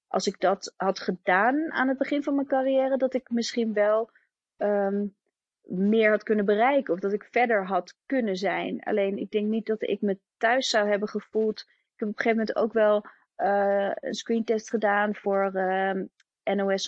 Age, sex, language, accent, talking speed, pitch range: 30-49, female, Dutch, Dutch, 185 wpm, 195-235 Hz